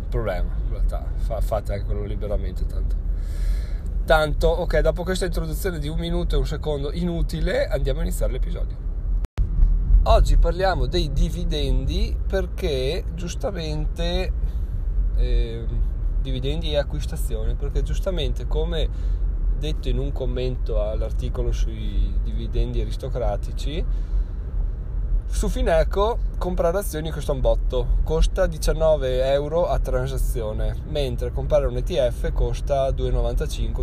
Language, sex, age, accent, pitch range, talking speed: Italian, male, 20-39, native, 80-125 Hz, 110 wpm